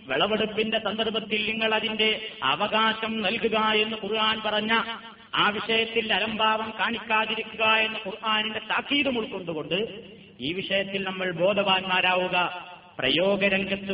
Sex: male